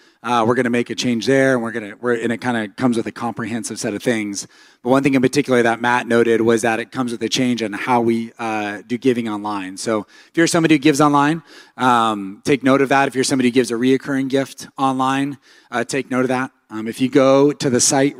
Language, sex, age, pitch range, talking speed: English, male, 30-49, 110-135 Hz, 255 wpm